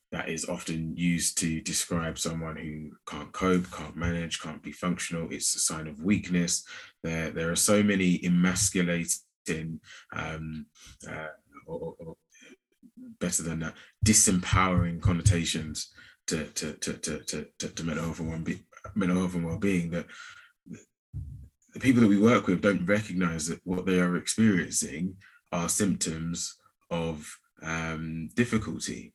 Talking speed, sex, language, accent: 130 wpm, male, English, British